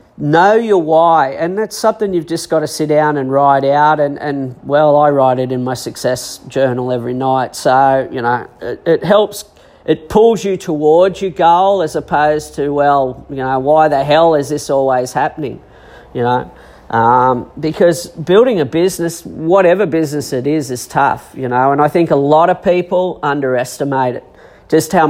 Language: English